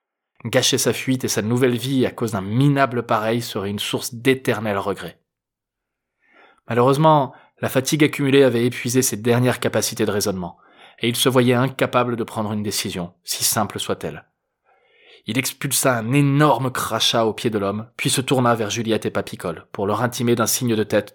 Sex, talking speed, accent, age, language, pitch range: male, 180 wpm, French, 20-39, French, 110-160 Hz